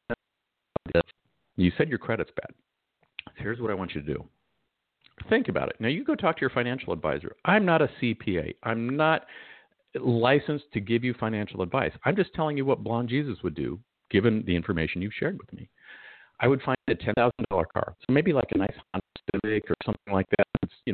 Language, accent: English, American